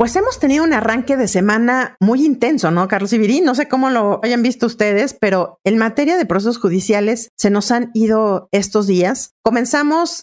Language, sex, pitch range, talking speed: Spanish, female, 185-240 Hz, 190 wpm